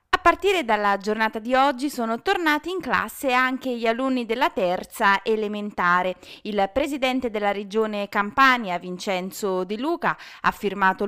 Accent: native